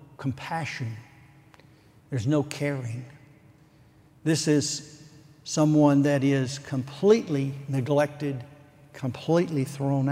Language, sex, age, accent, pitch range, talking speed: English, male, 60-79, American, 140-155 Hz, 75 wpm